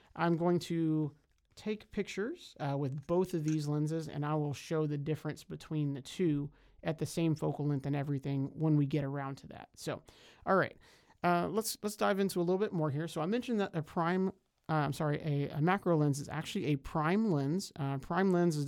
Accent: American